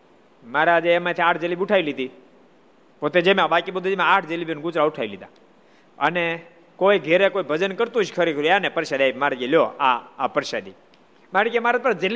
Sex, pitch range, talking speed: male, 155-225 Hz, 50 wpm